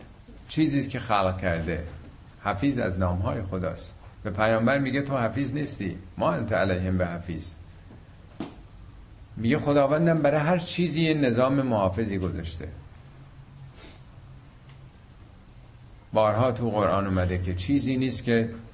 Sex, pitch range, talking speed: male, 95-125 Hz, 110 wpm